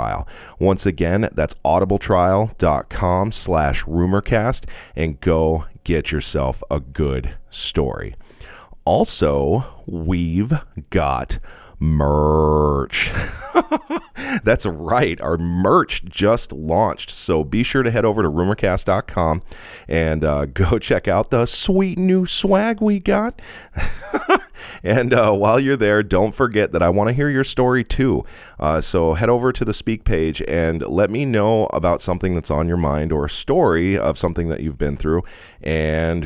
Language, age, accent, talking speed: English, 30-49, American, 140 wpm